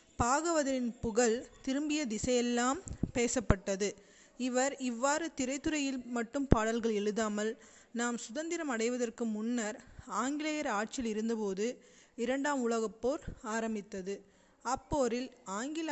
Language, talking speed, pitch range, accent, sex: Tamil, 90 wpm, 225-270 Hz, native, female